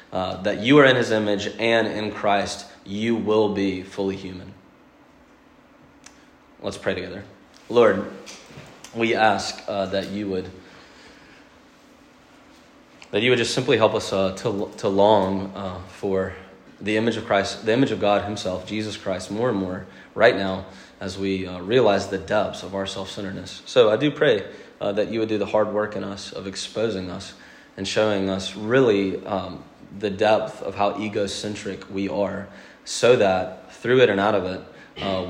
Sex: male